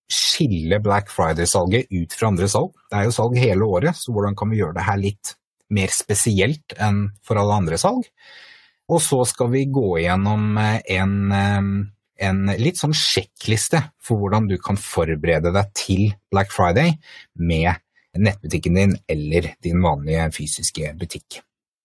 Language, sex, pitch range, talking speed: English, male, 95-120 Hz, 155 wpm